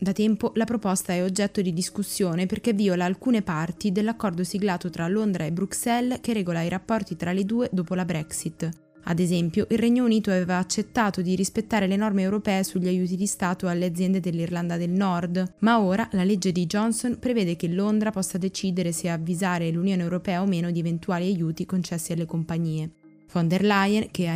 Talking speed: 190 wpm